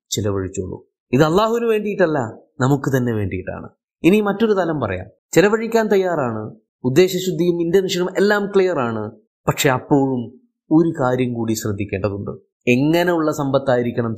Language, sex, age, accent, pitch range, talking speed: Malayalam, male, 20-39, native, 120-185 Hz, 105 wpm